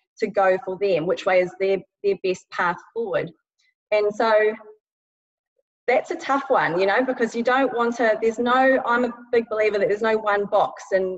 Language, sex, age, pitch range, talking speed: English, female, 30-49, 190-235 Hz, 200 wpm